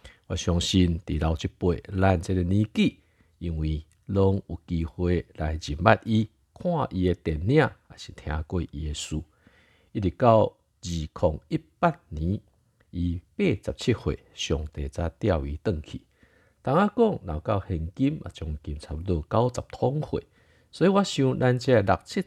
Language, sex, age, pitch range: Chinese, male, 50-69, 80-110 Hz